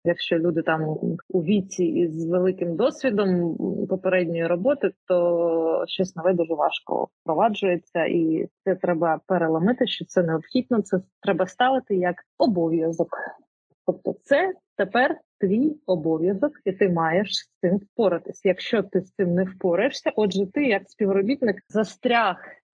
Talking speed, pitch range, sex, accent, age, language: 130 wpm, 175-215 Hz, female, native, 30-49, Ukrainian